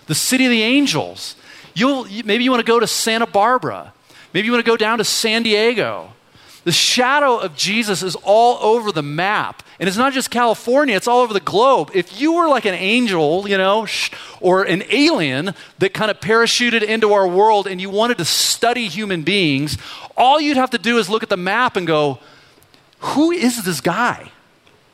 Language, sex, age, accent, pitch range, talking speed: English, male, 40-59, American, 165-235 Hz, 195 wpm